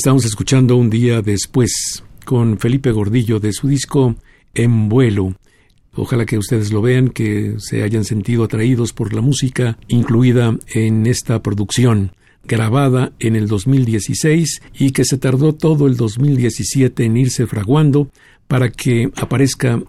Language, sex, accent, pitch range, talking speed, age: Spanish, male, Mexican, 110-130 Hz, 140 wpm, 50-69